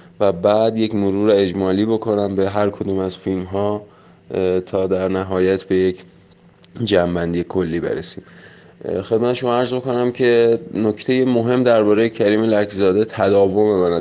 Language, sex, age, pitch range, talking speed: Persian, male, 20-39, 95-110 Hz, 135 wpm